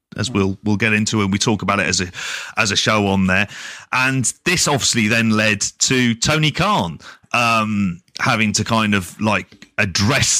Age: 30-49